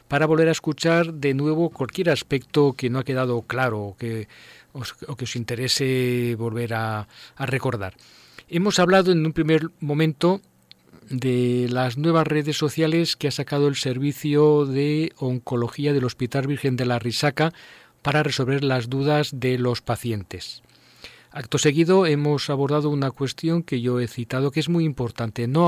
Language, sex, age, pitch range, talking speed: Spanish, male, 40-59, 125-150 Hz, 155 wpm